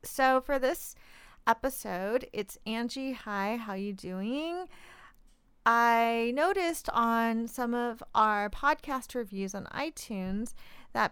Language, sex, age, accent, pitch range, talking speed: English, female, 40-59, American, 205-245 Hz, 120 wpm